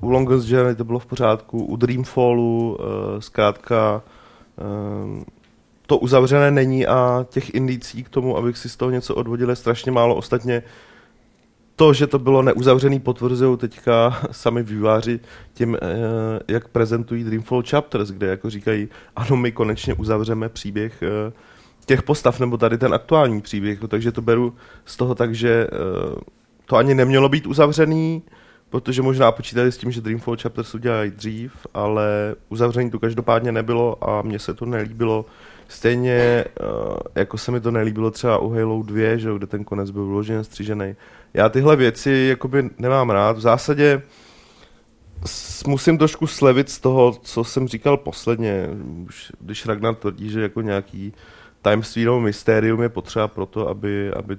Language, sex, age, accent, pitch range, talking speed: Czech, male, 30-49, native, 105-125 Hz, 160 wpm